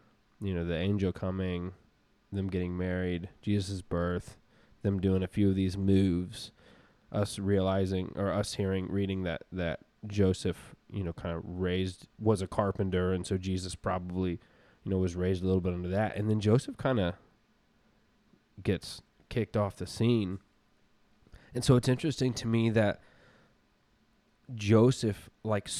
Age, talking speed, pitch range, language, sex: 20-39, 155 wpm, 95-115 Hz, English, male